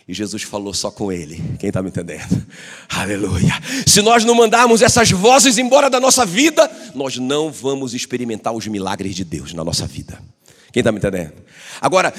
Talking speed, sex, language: 180 wpm, male, Portuguese